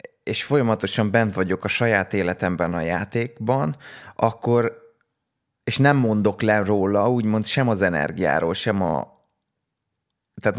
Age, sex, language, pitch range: 20-39, male, Hungarian, 100-125 Hz